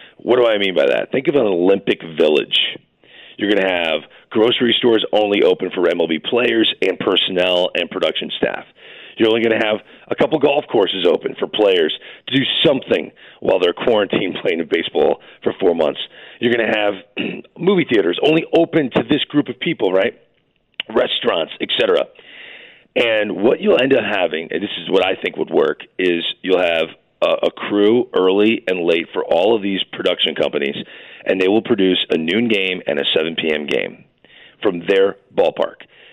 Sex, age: male, 40-59